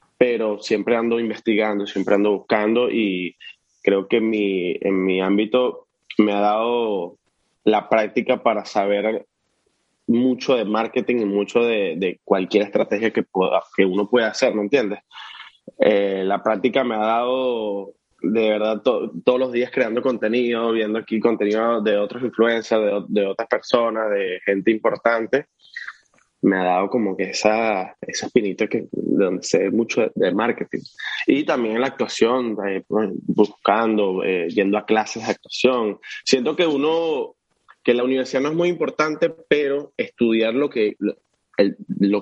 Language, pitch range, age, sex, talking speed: Spanish, 105-125 Hz, 20-39, male, 150 wpm